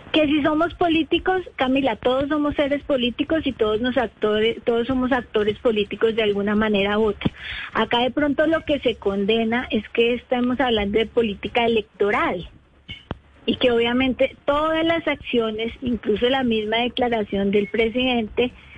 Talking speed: 155 wpm